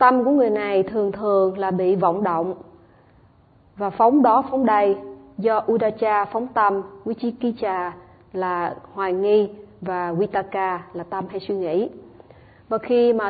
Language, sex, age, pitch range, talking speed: Vietnamese, female, 20-39, 185-220 Hz, 150 wpm